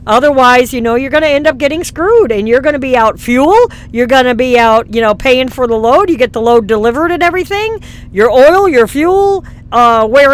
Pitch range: 235-315 Hz